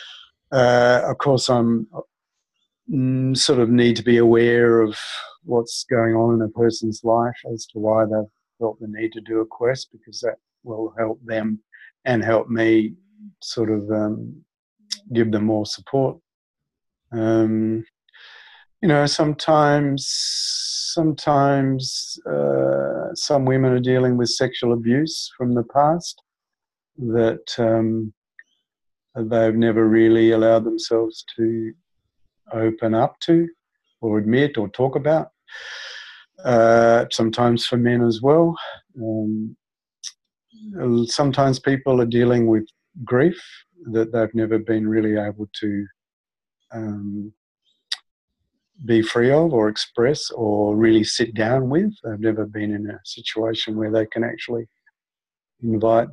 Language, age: English, 50-69